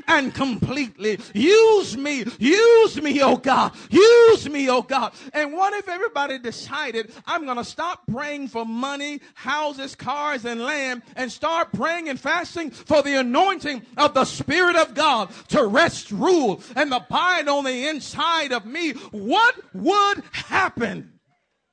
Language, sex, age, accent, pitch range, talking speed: English, male, 40-59, American, 195-295 Hz, 145 wpm